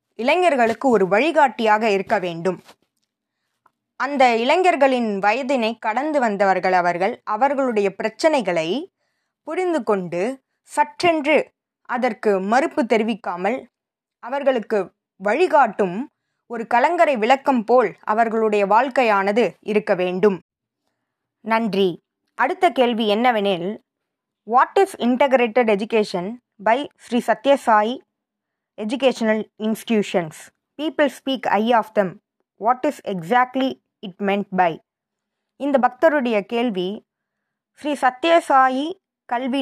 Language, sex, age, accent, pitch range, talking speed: Tamil, female, 20-39, native, 210-275 Hz, 90 wpm